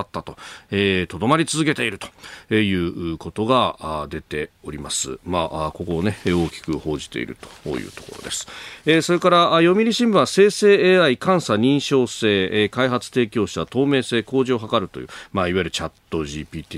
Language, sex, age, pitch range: Japanese, male, 40-59, 100-135 Hz